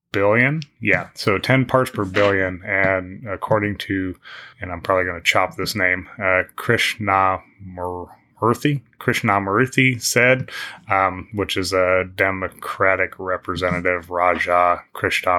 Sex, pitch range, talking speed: male, 90-100 Hz, 115 wpm